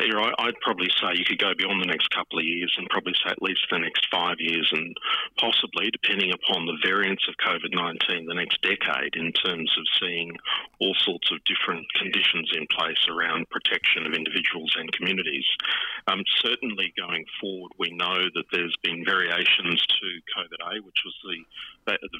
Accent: Australian